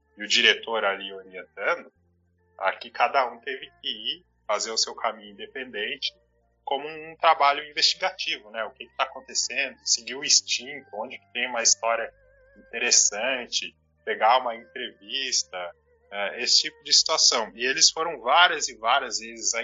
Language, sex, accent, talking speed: Portuguese, male, Brazilian, 155 wpm